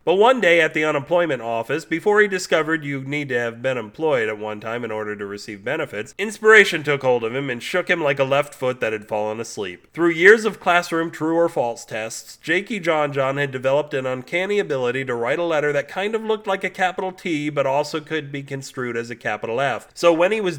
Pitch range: 130-175 Hz